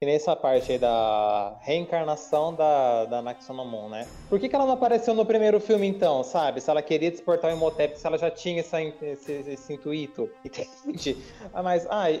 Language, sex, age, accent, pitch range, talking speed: Portuguese, male, 20-39, Brazilian, 135-185 Hz, 190 wpm